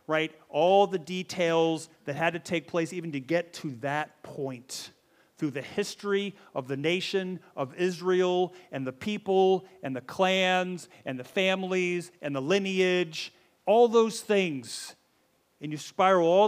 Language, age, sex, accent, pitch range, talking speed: English, 40-59, male, American, 150-190 Hz, 155 wpm